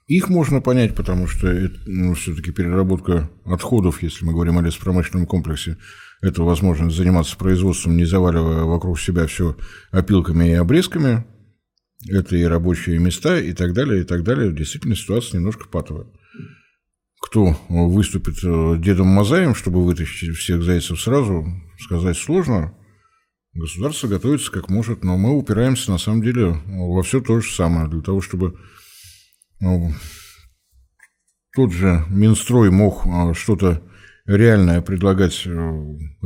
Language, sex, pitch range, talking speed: Russian, male, 85-105 Hz, 130 wpm